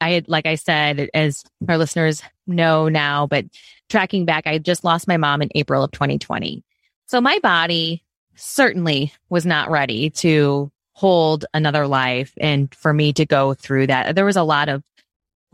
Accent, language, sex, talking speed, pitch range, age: American, English, female, 180 wpm, 150-185 Hz, 20-39